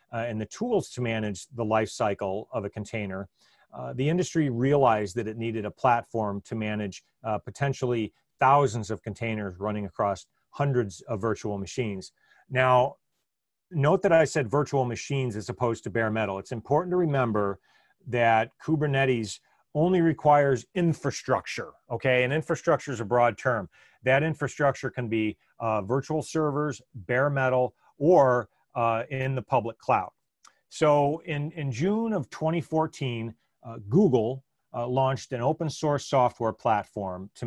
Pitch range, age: 110-135 Hz, 40-59